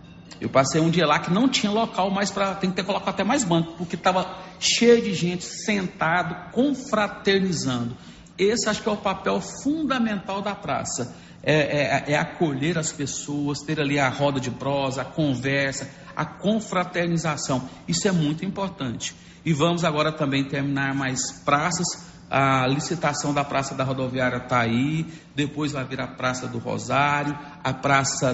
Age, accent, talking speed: 50-69, Brazilian, 165 wpm